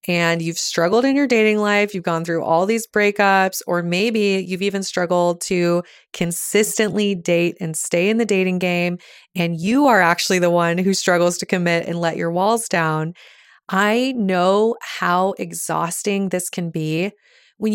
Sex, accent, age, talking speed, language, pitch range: female, American, 20-39, 170 wpm, English, 175-210 Hz